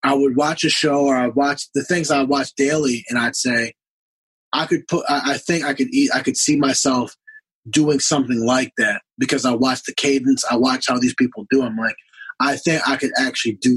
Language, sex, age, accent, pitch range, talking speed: English, male, 20-39, American, 125-150 Hz, 225 wpm